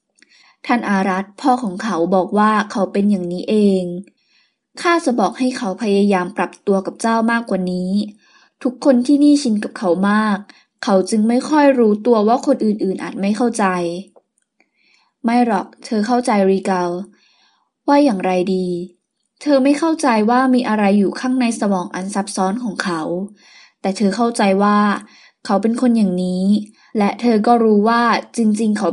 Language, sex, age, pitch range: Thai, female, 20-39, 195-240 Hz